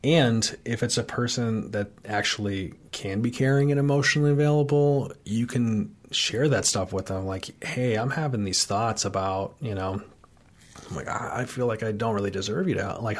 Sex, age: male, 30-49